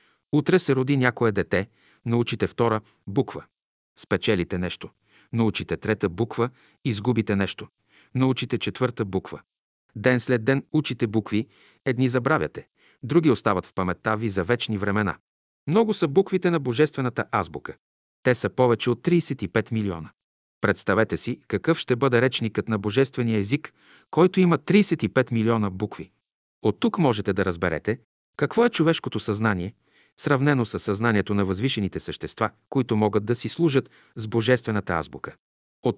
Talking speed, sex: 140 wpm, male